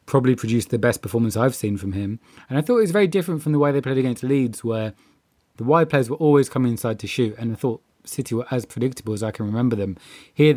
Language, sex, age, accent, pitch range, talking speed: English, male, 20-39, British, 110-130 Hz, 260 wpm